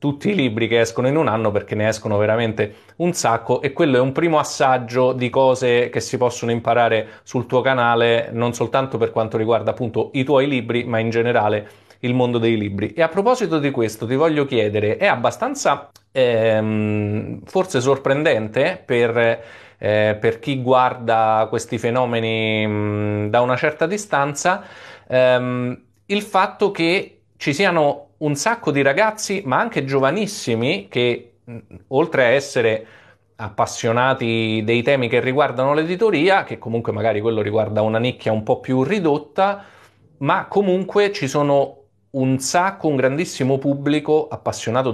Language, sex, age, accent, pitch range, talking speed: Italian, male, 30-49, native, 110-140 Hz, 150 wpm